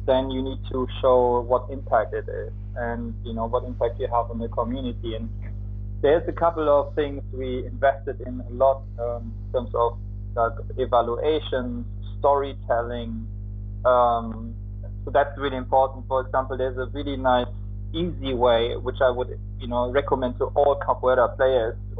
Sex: male